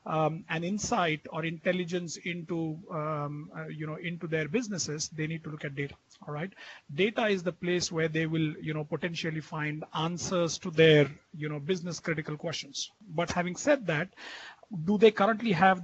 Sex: male